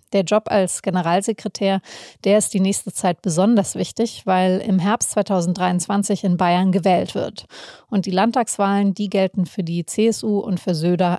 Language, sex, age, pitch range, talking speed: German, female, 30-49, 185-215 Hz, 160 wpm